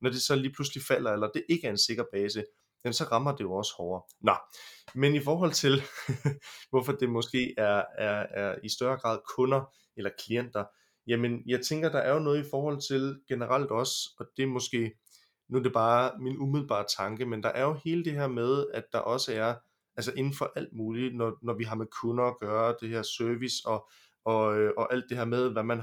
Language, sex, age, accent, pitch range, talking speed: Danish, male, 20-39, native, 115-135 Hz, 225 wpm